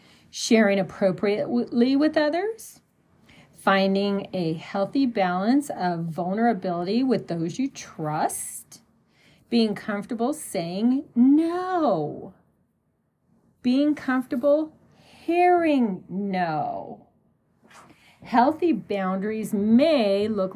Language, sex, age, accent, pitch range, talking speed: English, female, 40-59, American, 185-270 Hz, 75 wpm